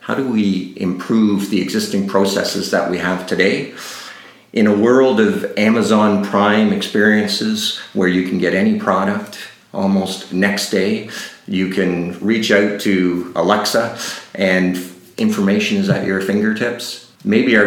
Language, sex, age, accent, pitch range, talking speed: English, male, 50-69, American, 90-105 Hz, 140 wpm